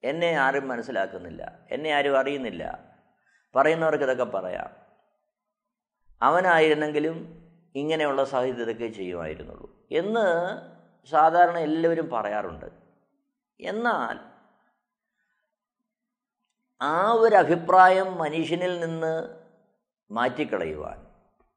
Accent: native